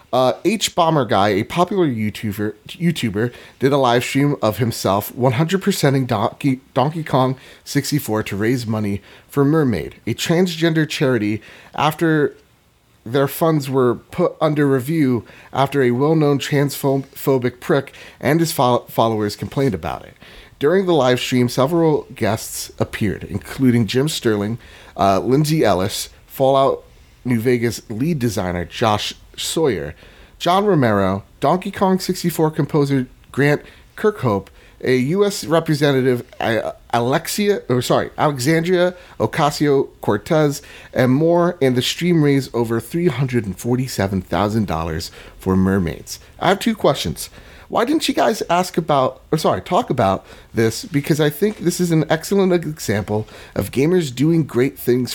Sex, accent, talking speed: male, American, 135 wpm